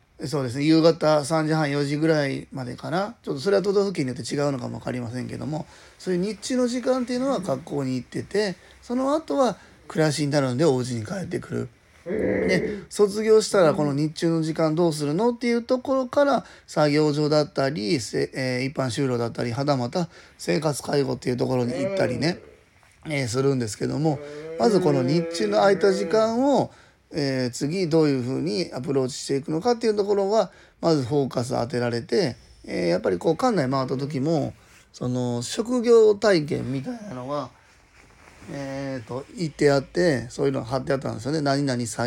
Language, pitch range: Japanese, 130-180 Hz